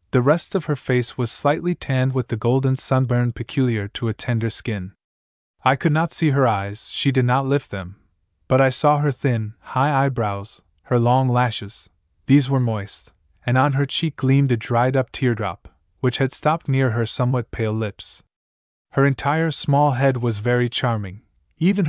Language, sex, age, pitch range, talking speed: English, male, 20-39, 105-135 Hz, 180 wpm